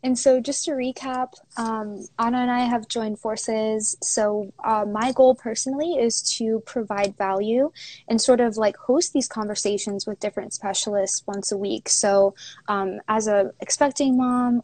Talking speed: 165 wpm